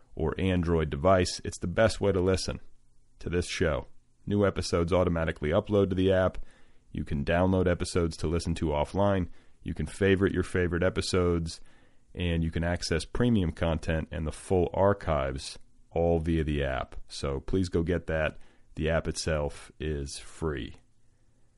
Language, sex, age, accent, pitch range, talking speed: English, male, 30-49, American, 80-105 Hz, 160 wpm